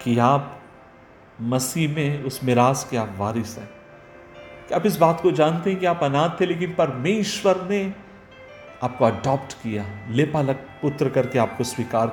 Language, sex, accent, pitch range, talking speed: Hindi, male, native, 120-155 Hz, 160 wpm